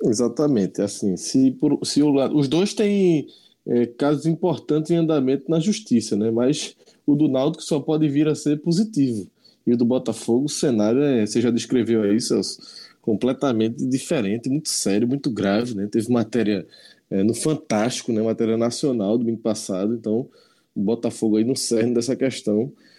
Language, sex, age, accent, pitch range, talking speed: Portuguese, male, 20-39, Brazilian, 115-155 Hz, 170 wpm